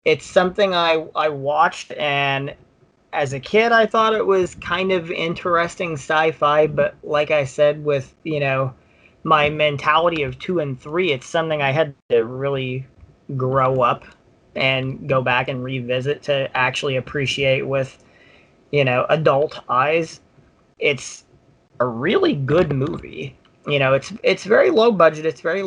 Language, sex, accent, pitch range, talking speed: English, male, American, 130-160 Hz, 150 wpm